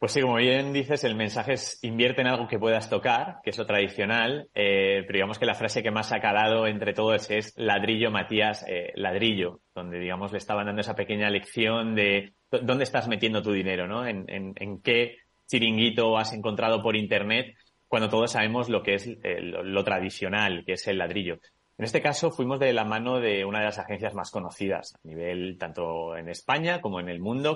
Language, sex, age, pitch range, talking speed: Spanish, male, 30-49, 100-125 Hz, 205 wpm